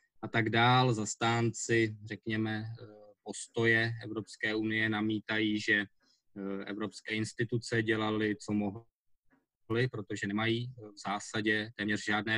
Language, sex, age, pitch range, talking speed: Czech, male, 20-39, 105-120 Hz, 100 wpm